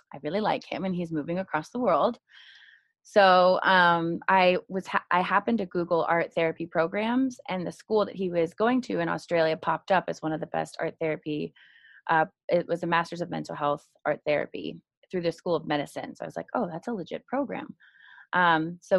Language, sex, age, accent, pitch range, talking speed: English, female, 20-39, American, 160-190 Hz, 210 wpm